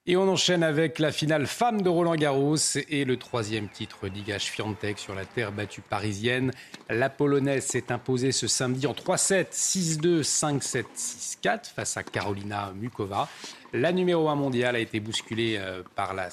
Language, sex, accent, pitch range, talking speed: French, male, French, 115-165 Hz, 165 wpm